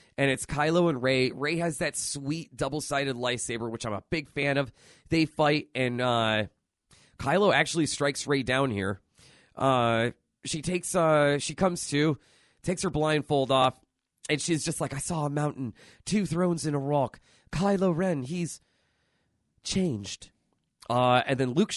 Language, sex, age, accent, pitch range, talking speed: English, male, 30-49, American, 120-170 Hz, 165 wpm